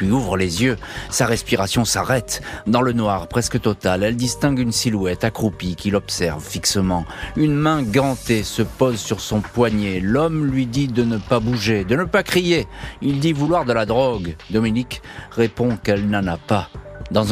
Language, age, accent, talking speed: French, 40-59, French, 180 wpm